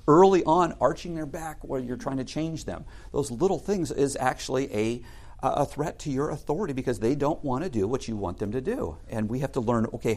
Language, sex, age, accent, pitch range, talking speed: English, male, 50-69, American, 100-135 Hz, 235 wpm